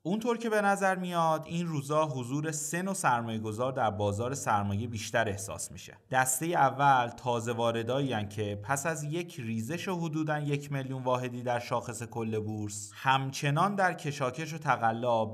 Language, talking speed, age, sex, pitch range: Persian, 160 wpm, 30-49, male, 115-160 Hz